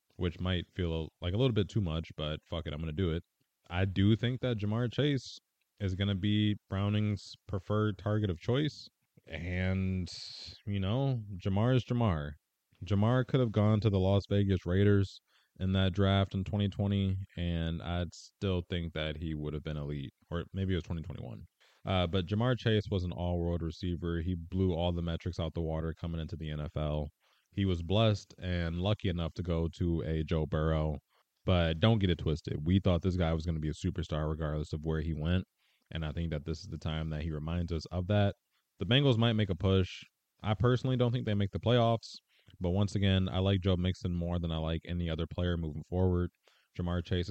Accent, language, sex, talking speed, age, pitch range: American, English, male, 210 wpm, 20-39, 85-105 Hz